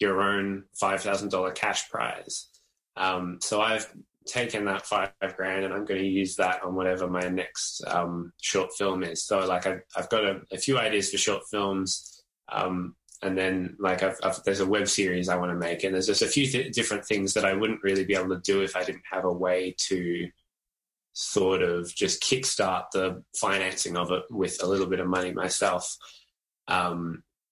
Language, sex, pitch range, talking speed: English, male, 90-100 Hz, 190 wpm